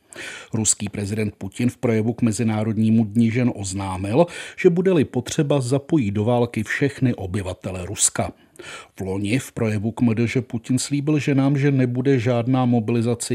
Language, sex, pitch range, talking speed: Czech, male, 105-130 Hz, 155 wpm